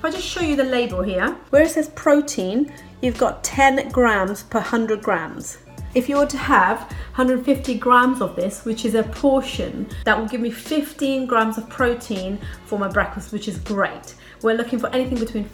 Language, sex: English, female